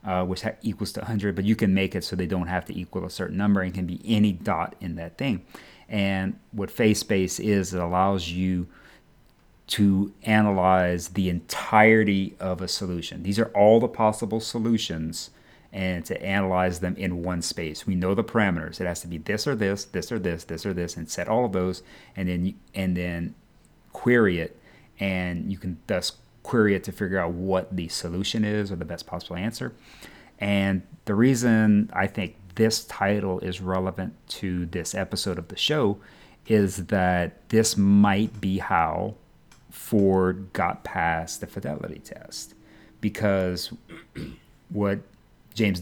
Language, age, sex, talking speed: English, 30-49, male, 170 wpm